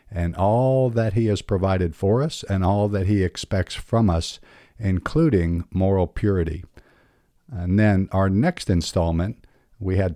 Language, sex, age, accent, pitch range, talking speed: English, male, 50-69, American, 85-100 Hz, 150 wpm